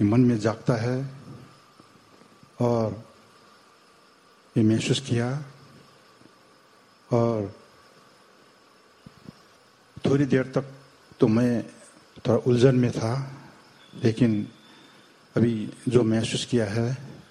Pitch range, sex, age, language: 115-130 Hz, male, 70-89, Thai